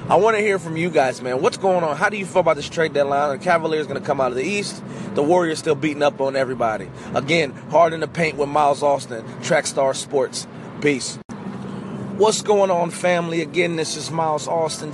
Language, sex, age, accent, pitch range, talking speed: English, male, 30-49, American, 135-175 Hz, 215 wpm